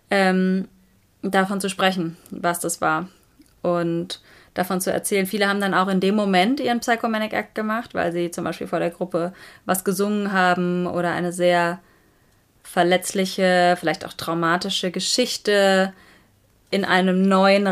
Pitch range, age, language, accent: 175-205 Hz, 20-39, German, German